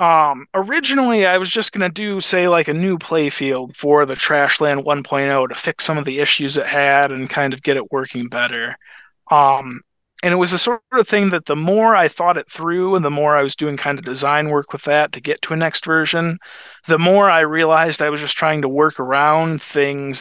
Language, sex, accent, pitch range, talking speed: English, male, American, 140-170 Hz, 230 wpm